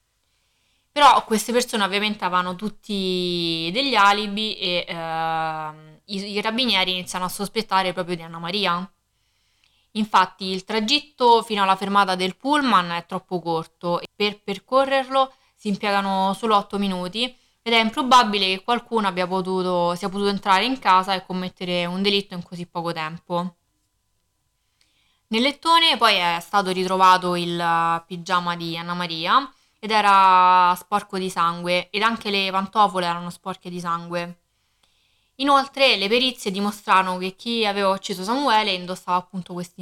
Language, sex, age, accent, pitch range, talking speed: Italian, female, 20-39, native, 175-220 Hz, 145 wpm